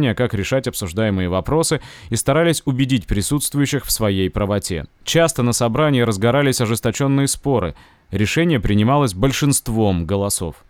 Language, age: Russian, 30-49